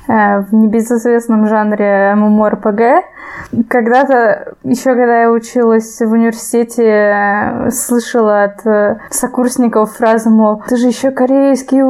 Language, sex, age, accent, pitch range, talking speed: Russian, female, 20-39, native, 225-270 Hz, 105 wpm